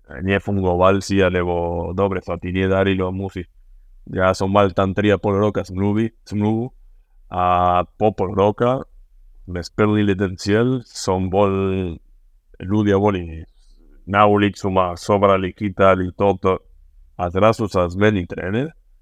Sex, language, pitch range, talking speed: male, Slovak, 90-105 Hz, 125 wpm